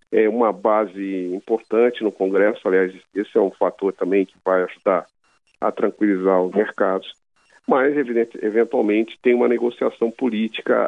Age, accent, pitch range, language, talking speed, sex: 50-69, Brazilian, 100-120 Hz, Portuguese, 145 wpm, male